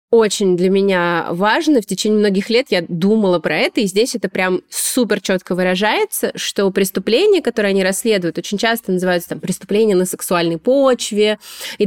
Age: 20-39